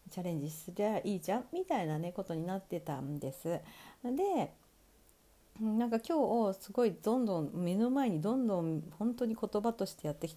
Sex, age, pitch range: female, 40-59, 155-220 Hz